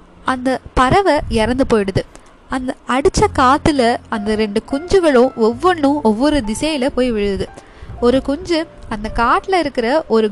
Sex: female